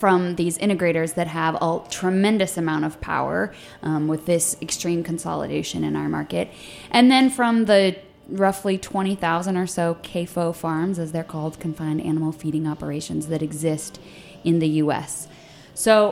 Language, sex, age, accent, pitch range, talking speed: English, female, 20-39, American, 165-210 Hz, 155 wpm